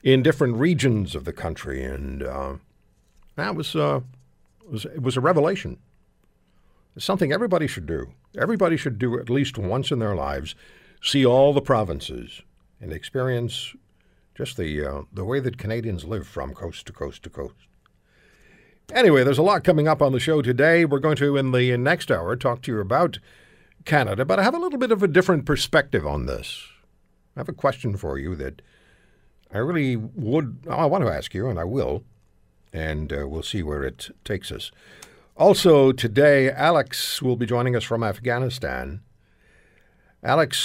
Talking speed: 180 wpm